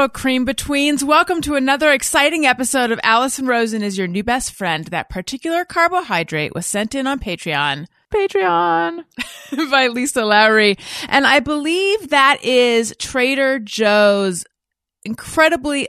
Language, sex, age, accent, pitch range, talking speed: English, female, 30-49, American, 175-245 Hz, 135 wpm